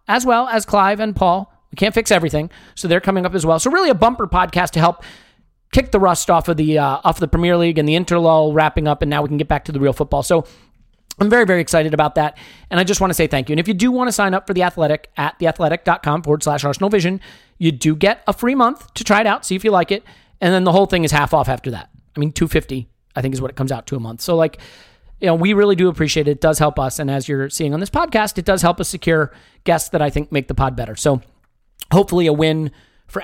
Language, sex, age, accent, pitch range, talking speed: English, male, 40-59, American, 150-190 Hz, 285 wpm